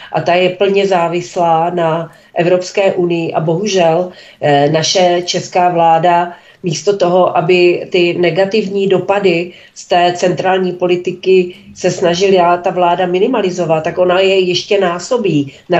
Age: 40-59